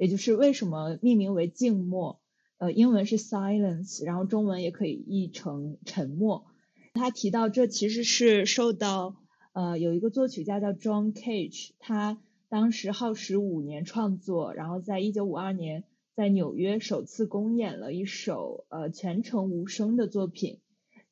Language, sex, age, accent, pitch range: Chinese, female, 20-39, native, 190-225 Hz